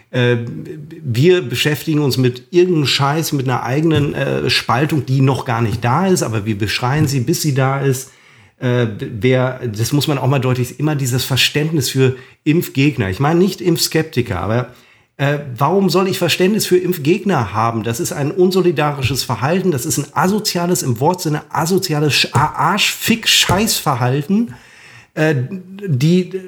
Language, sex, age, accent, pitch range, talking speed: German, male, 40-59, German, 125-165 Hz, 155 wpm